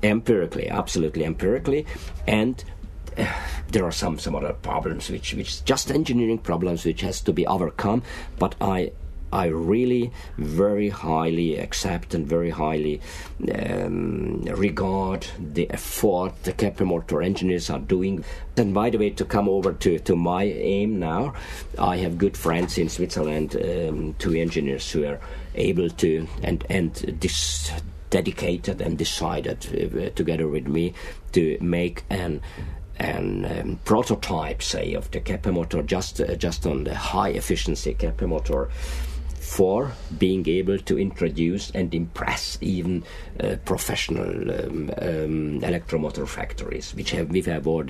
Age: 50-69